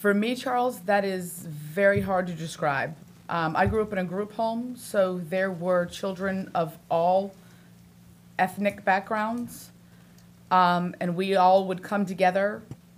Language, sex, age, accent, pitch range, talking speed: English, female, 30-49, American, 175-215 Hz, 150 wpm